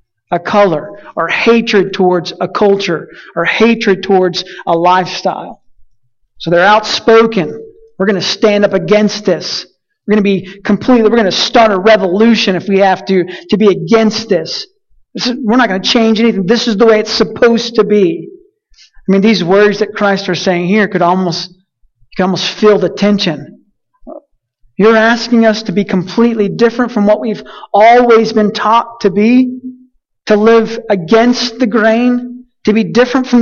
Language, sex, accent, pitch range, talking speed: English, male, American, 195-245 Hz, 170 wpm